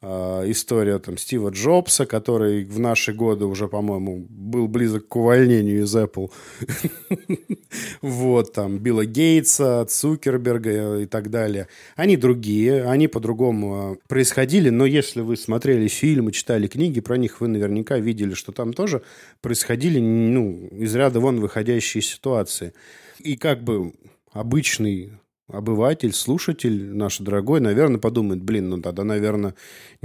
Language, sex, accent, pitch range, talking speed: Russian, male, native, 100-130 Hz, 120 wpm